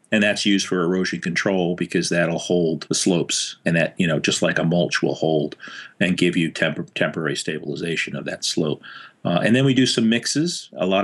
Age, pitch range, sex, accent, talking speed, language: 40-59, 85-105 Hz, male, American, 205 wpm, English